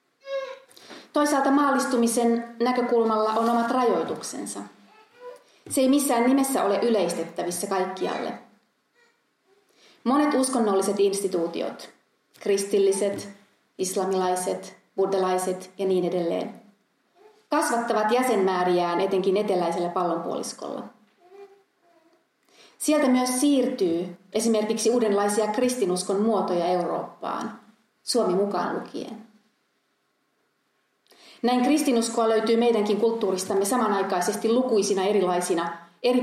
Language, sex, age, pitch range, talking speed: Finnish, female, 30-49, 185-245 Hz, 80 wpm